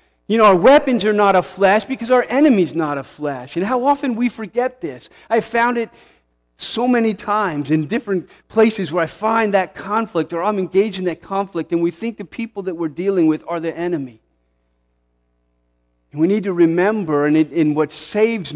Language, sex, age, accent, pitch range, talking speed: English, male, 40-59, American, 130-185 Hz, 200 wpm